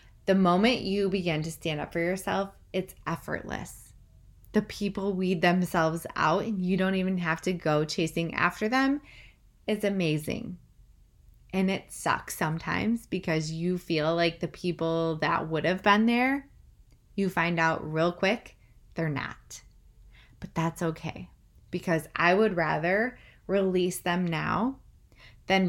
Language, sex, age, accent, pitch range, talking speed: English, female, 20-39, American, 160-195 Hz, 140 wpm